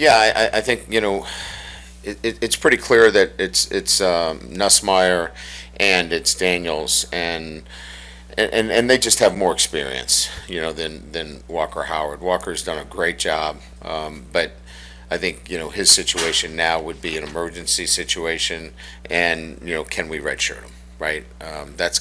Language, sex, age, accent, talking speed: English, male, 50-69, American, 170 wpm